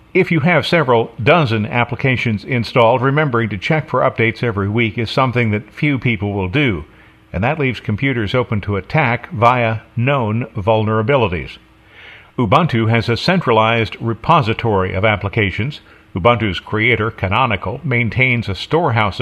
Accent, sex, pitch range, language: American, male, 105-125 Hz, English